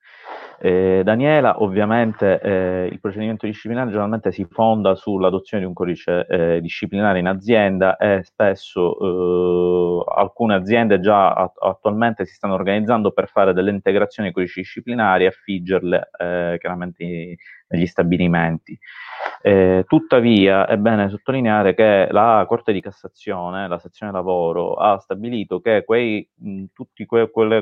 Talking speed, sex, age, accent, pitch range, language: 135 wpm, male, 30-49, native, 95-110 Hz, Italian